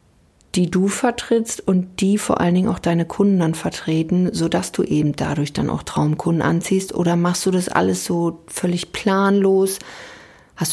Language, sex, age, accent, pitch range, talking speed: German, female, 40-59, German, 170-200 Hz, 170 wpm